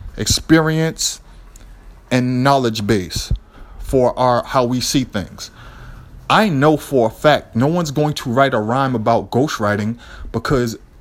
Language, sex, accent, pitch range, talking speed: English, male, American, 105-155 Hz, 135 wpm